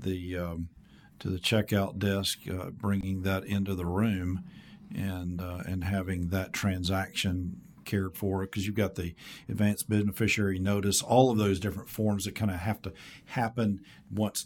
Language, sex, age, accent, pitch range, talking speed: English, male, 50-69, American, 95-110 Hz, 160 wpm